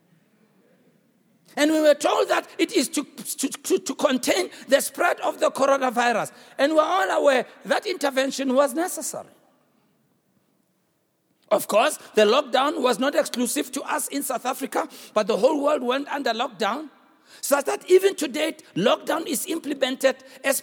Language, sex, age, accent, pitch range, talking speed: English, male, 60-79, South African, 205-295 Hz, 150 wpm